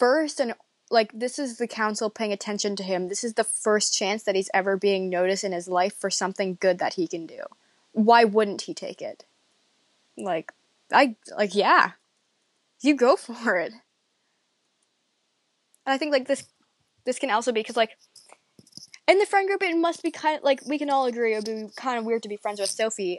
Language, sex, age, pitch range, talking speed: English, female, 20-39, 190-250 Hz, 205 wpm